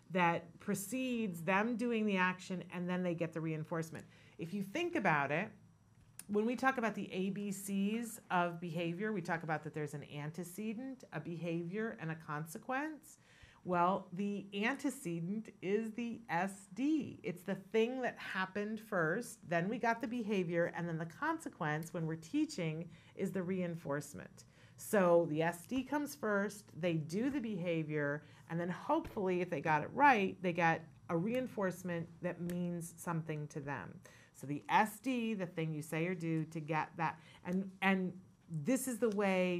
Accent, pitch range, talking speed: American, 165-210 Hz, 165 wpm